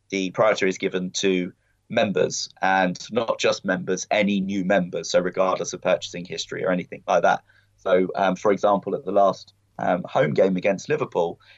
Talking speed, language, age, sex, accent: 175 wpm, English, 20-39, male, British